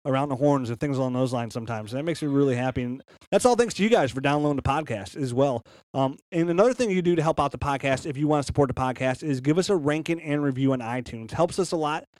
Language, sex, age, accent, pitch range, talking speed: English, male, 30-49, American, 125-160 Hz, 290 wpm